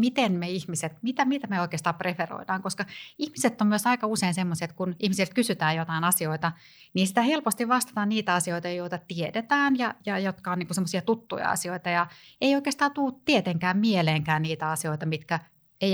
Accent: native